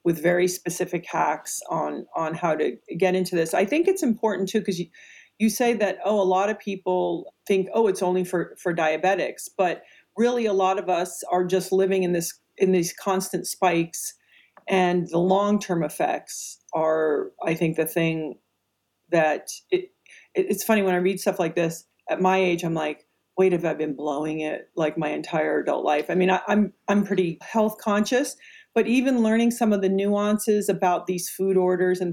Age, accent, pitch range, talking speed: 40-59, American, 175-205 Hz, 190 wpm